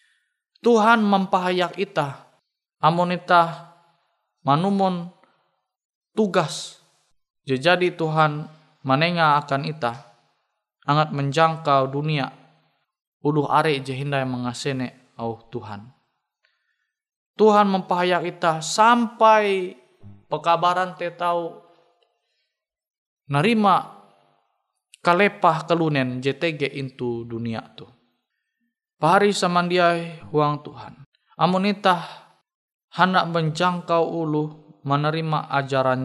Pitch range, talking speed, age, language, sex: 145-180 Hz, 75 wpm, 20-39, Indonesian, male